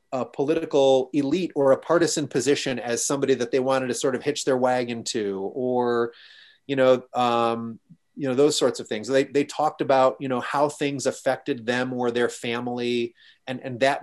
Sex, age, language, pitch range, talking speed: male, 30-49, English, 120-135 Hz, 195 wpm